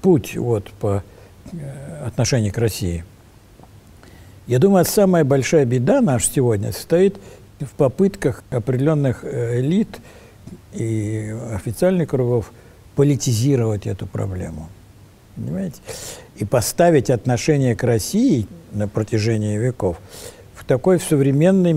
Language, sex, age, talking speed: Russian, male, 60-79, 100 wpm